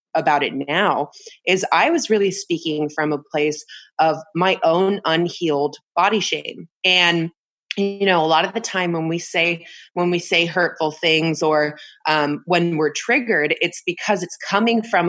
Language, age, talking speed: English, 20-39, 170 wpm